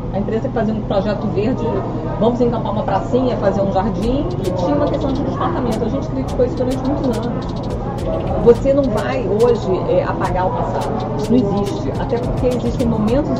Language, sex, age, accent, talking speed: English, female, 40-59, Brazilian, 185 wpm